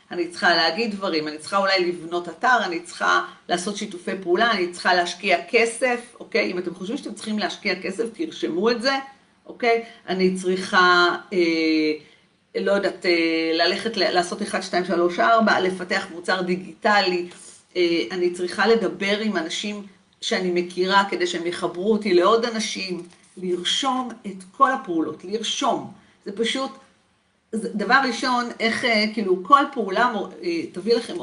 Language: Hebrew